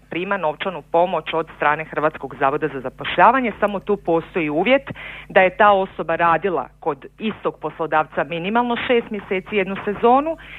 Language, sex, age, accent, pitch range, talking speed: Croatian, female, 40-59, native, 155-195 Hz, 145 wpm